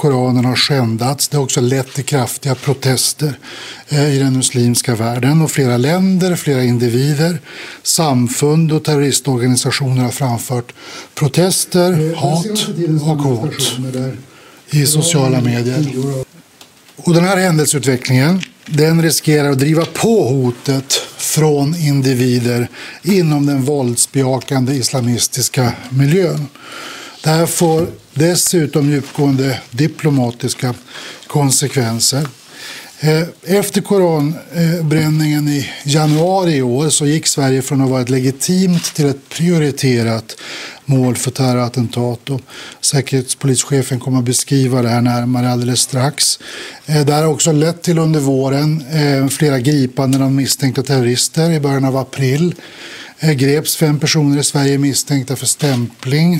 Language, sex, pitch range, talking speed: English, male, 130-155 Hz, 115 wpm